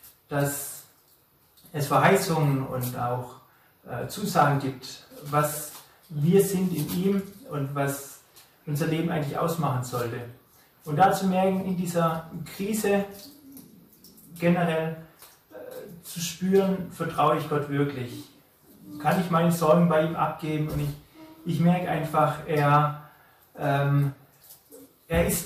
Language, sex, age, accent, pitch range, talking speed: German, male, 30-49, German, 140-170 Hz, 120 wpm